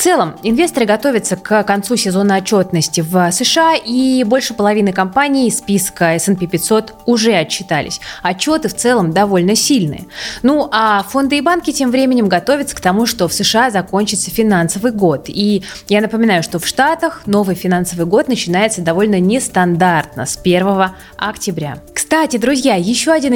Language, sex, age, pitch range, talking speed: Russian, female, 20-39, 185-260 Hz, 155 wpm